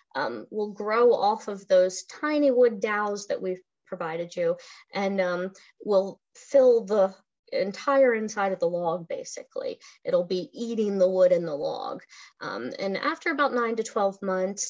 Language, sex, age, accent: English, female, 20-39, American